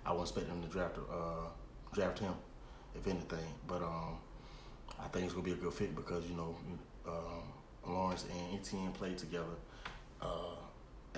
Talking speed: 170 wpm